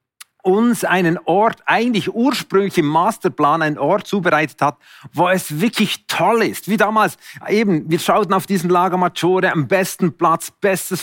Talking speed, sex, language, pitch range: 150 wpm, male, German, 165-210 Hz